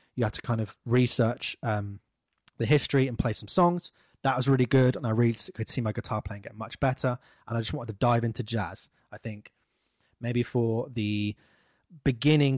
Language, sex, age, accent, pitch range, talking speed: English, male, 20-39, British, 110-130 Hz, 200 wpm